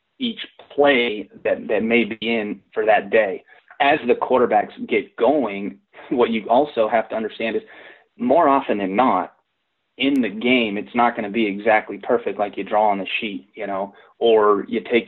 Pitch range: 105-140 Hz